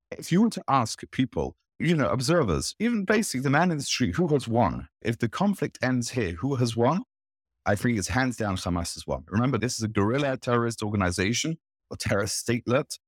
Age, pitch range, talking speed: 30-49, 100-140 Hz, 205 wpm